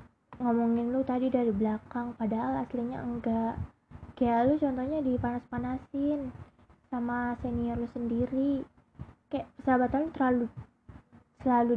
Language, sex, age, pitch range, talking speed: Indonesian, female, 20-39, 225-250 Hz, 110 wpm